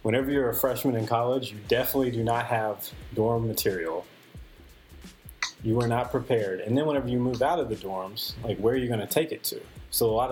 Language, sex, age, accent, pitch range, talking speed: English, male, 30-49, American, 105-135 Hz, 220 wpm